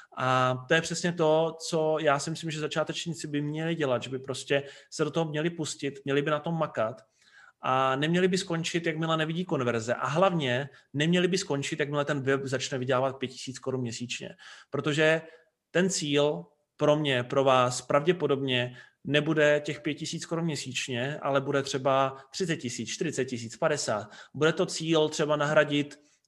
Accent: native